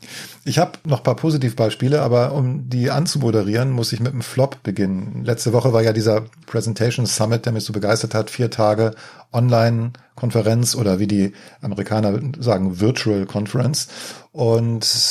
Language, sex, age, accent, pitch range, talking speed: German, male, 40-59, German, 110-130 Hz, 155 wpm